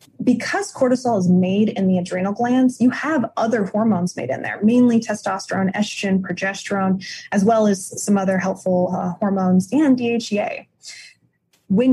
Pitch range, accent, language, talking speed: 190-230 Hz, American, English, 150 wpm